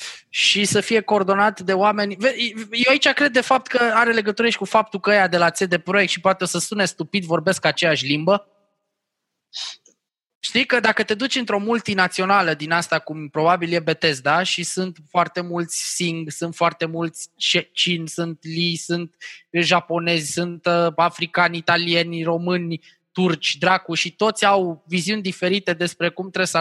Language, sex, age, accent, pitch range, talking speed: Romanian, male, 20-39, native, 170-225 Hz, 165 wpm